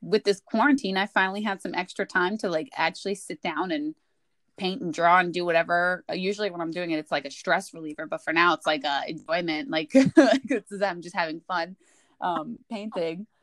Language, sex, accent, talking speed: English, female, American, 205 wpm